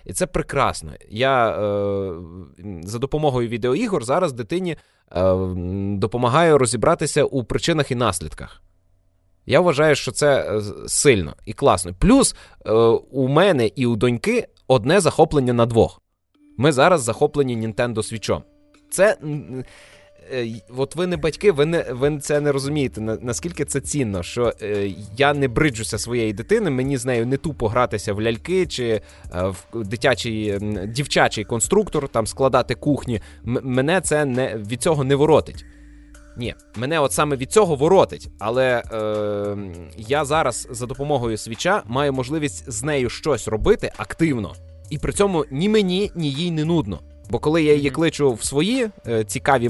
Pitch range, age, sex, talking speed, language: 105-150 Hz, 20-39, male, 140 wpm, Russian